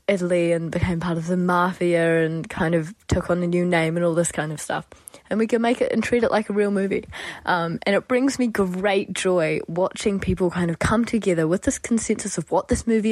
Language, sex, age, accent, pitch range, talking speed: English, female, 20-39, Australian, 165-205 Hz, 240 wpm